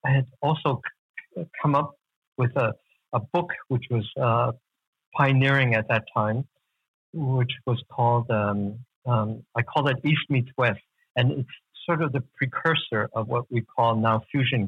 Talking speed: 160 wpm